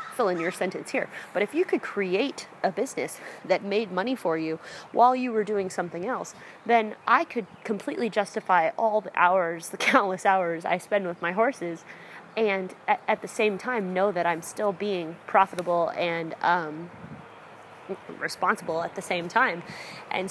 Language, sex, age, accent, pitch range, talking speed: English, female, 20-39, American, 175-215 Hz, 170 wpm